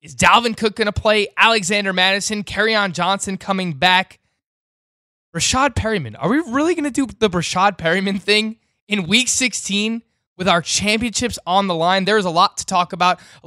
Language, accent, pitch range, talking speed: English, American, 175-235 Hz, 180 wpm